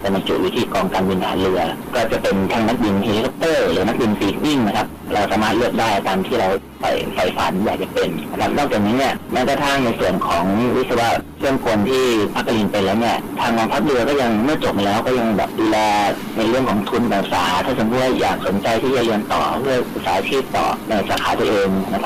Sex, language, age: male, Thai, 30-49